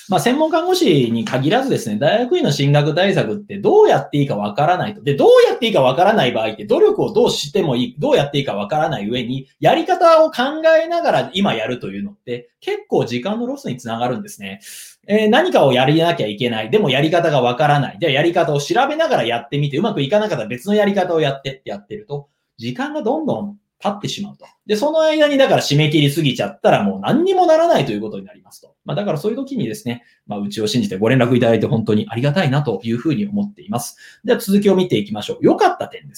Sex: male